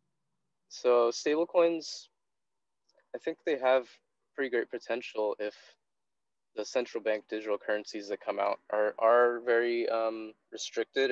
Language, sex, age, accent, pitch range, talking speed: English, male, 20-39, American, 105-130 Hz, 130 wpm